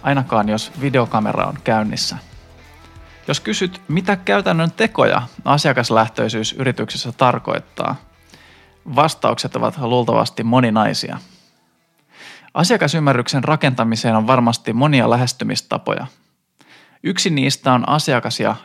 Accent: native